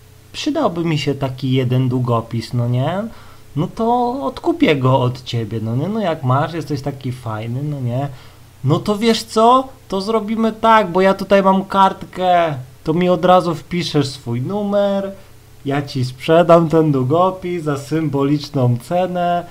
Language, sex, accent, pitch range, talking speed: Polish, male, native, 140-200 Hz, 155 wpm